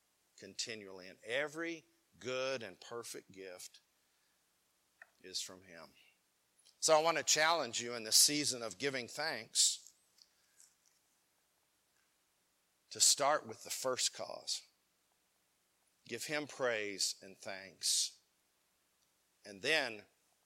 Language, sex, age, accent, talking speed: English, male, 50-69, American, 105 wpm